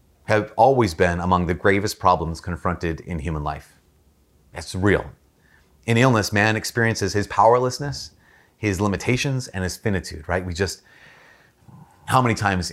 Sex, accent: male, American